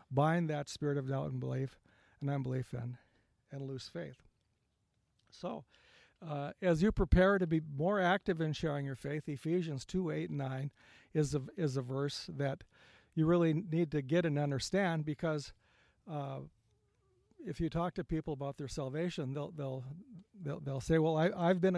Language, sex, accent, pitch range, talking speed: English, male, American, 135-170 Hz, 175 wpm